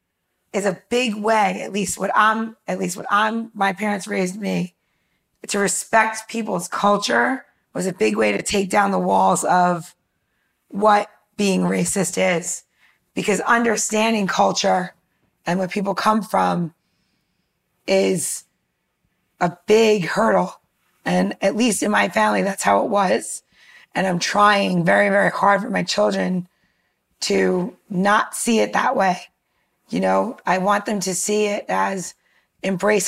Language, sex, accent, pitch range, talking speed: English, female, American, 185-215 Hz, 145 wpm